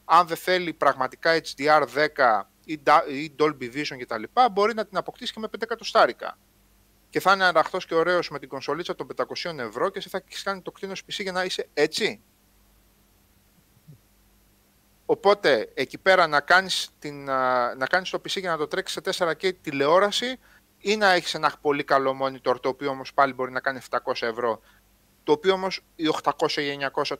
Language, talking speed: Greek, 180 wpm